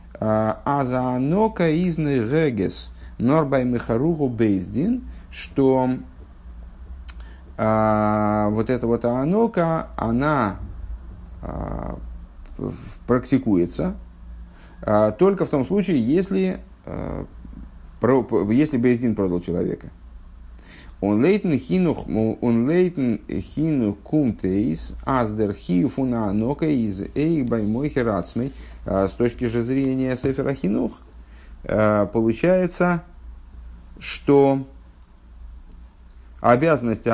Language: Russian